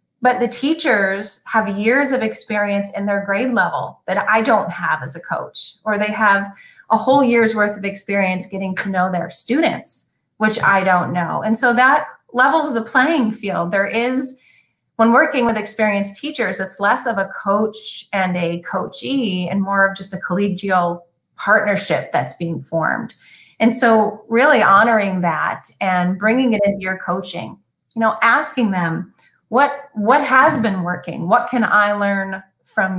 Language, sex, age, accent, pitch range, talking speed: English, female, 30-49, American, 185-225 Hz, 170 wpm